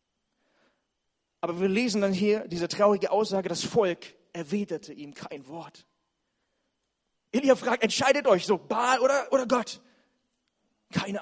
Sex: male